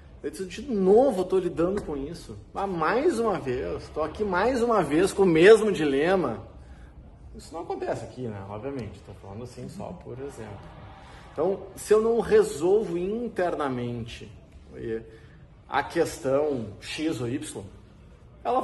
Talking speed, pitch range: 140 wpm, 115-170 Hz